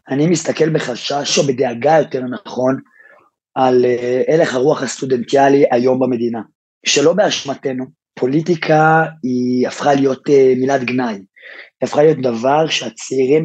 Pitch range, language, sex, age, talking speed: 130-155 Hz, Hebrew, male, 30-49, 115 wpm